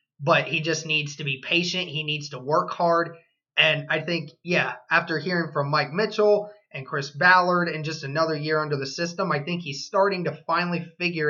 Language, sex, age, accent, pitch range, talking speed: English, male, 20-39, American, 150-175 Hz, 200 wpm